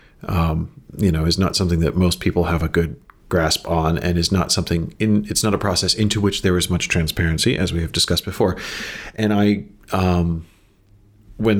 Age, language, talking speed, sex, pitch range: 40-59, English, 190 wpm, male, 85-105 Hz